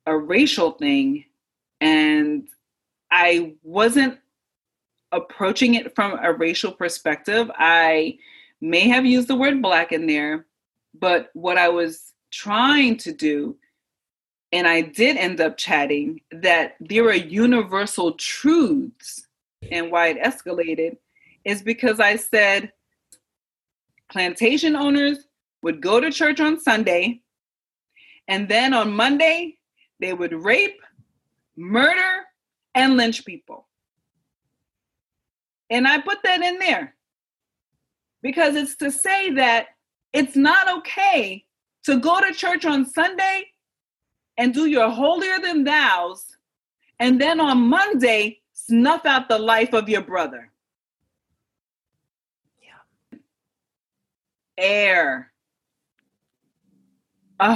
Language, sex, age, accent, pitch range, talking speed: English, female, 30-49, American, 185-295 Hz, 110 wpm